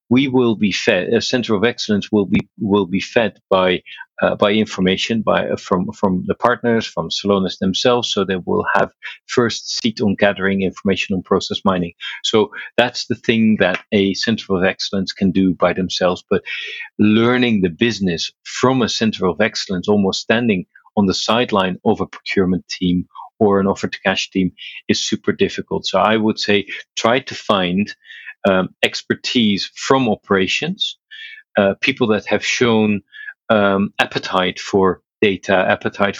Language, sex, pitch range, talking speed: English, male, 95-115 Hz, 160 wpm